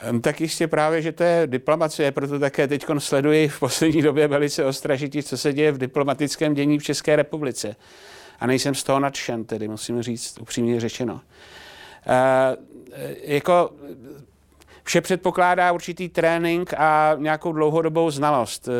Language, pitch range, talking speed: Czech, 130-155 Hz, 145 wpm